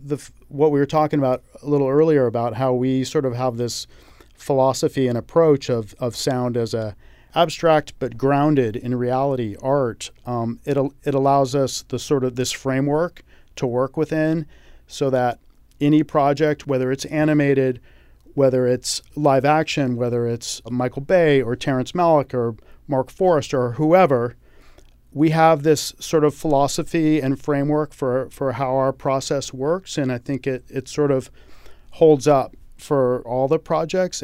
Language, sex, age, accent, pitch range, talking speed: English, male, 40-59, American, 125-150 Hz, 165 wpm